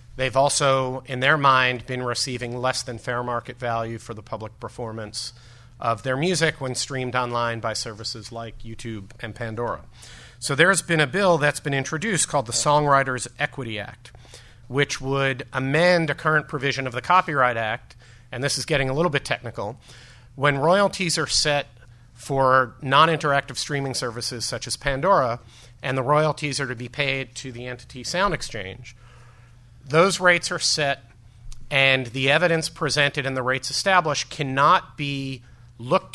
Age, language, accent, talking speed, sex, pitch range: 40-59, English, American, 160 wpm, male, 120-140 Hz